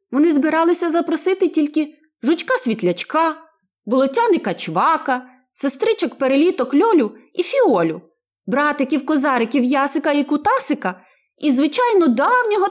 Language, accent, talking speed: Ukrainian, native, 80 wpm